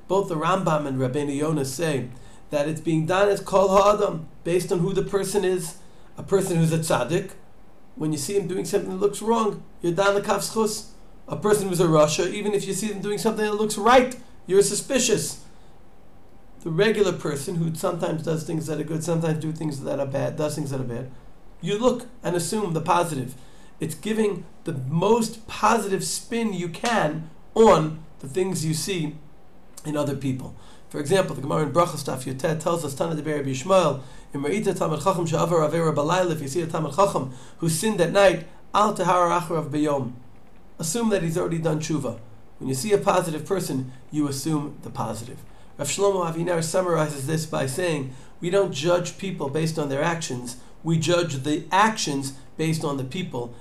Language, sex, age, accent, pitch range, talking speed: English, male, 40-59, American, 145-195 Hz, 180 wpm